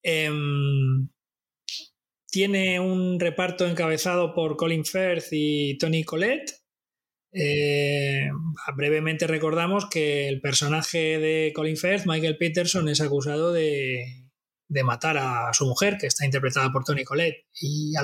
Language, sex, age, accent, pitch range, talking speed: Spanish, male, 20-39, Spanish, 145-180 Hz, 125 wpm